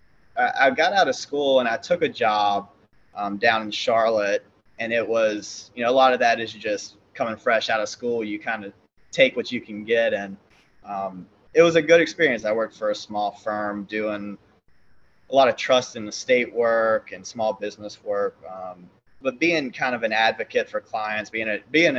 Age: 20-39